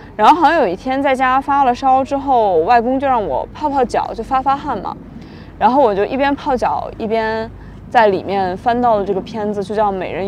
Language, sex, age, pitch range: Chinese, female, 20-39, 205-270 Hz